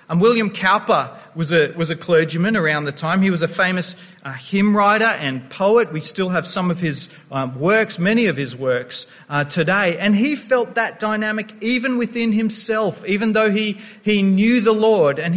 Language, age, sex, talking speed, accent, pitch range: English, 40-59, male, 195 wpm, Australian, 145-210 Hz